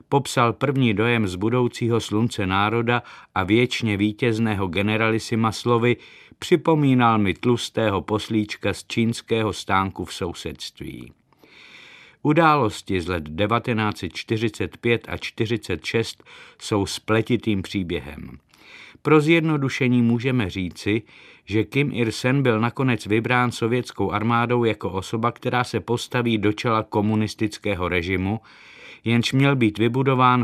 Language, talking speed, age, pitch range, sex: Czech, 110 wpm, 50-69, 100-125 Hz, male